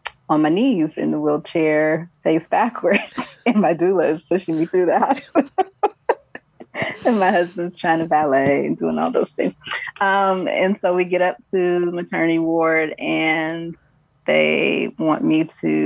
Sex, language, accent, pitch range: female, English, American, 150-180 Hz